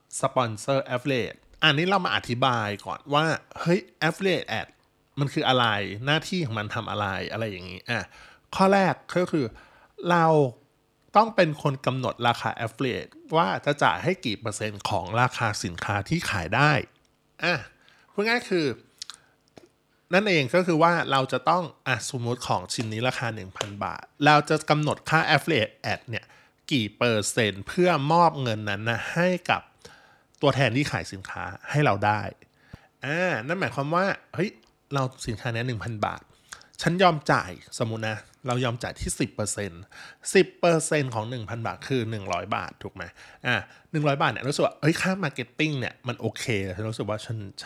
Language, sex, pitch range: Thai, male, 110-155 Hz